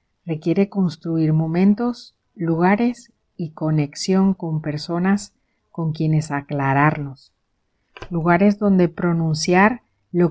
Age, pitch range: 50-69, 155-200 Hz